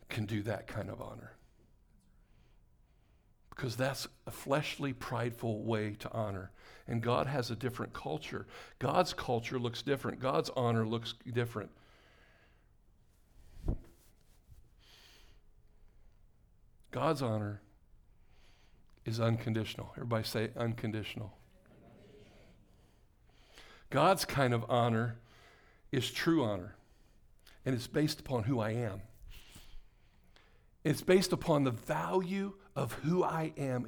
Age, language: 50-69, English